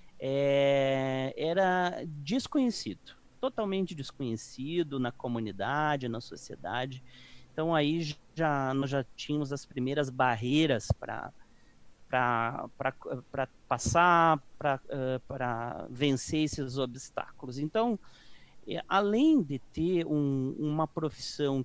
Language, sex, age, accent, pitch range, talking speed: Portuguese, male, 40-59, Brazilian, 130-155 Hz, 85 wpm